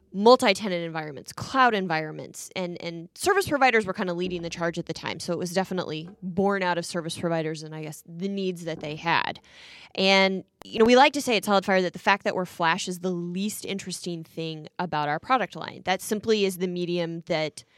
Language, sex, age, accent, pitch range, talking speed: English, female, 20-39, American, 165-210 Hz, 215 wpm